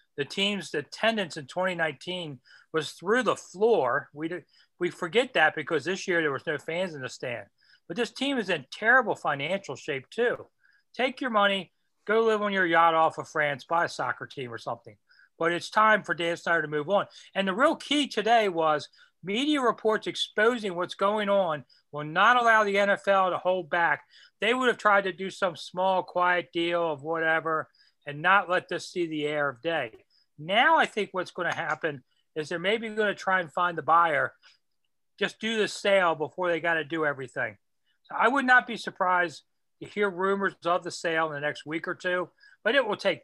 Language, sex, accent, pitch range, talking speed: English, male, American, 160-200 Hz, 205 wpm